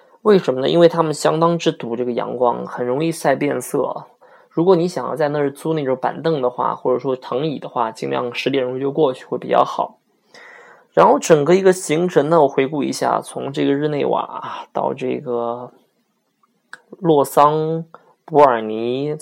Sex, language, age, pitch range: male, Chinese, 20-39, 125-160 Hz